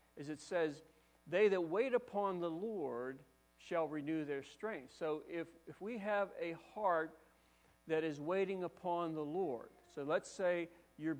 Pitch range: 130-180 Hz